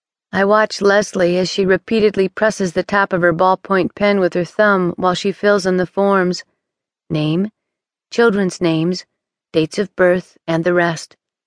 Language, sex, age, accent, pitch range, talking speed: English, female, 40-59, American, 170-205 Hz, 160 wpm